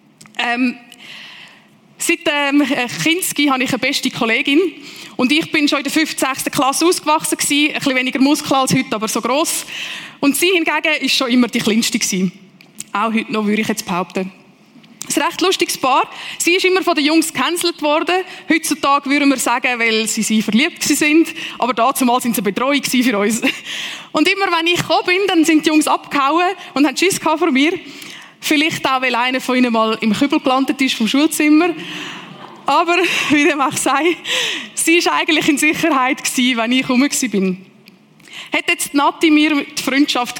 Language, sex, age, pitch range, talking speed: German, female, 20-39, 235-310 Hz, 190 wpm